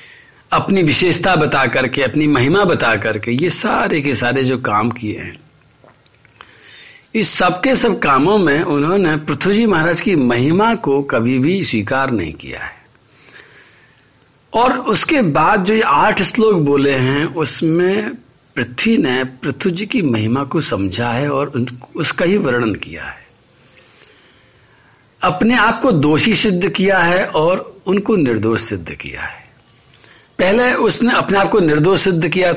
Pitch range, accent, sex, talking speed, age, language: 120-190 Hz, native, male, 150 wpm, 50-69, Hindi